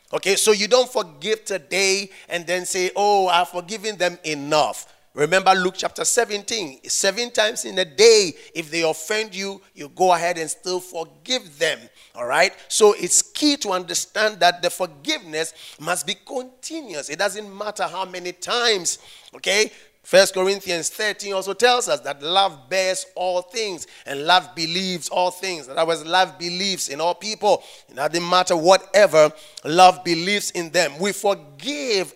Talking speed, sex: 160 wpm, male